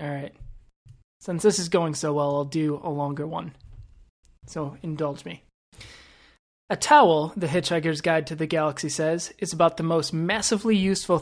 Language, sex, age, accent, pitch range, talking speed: English, male, 20-39, American, 160-185 Hz, 165 wpm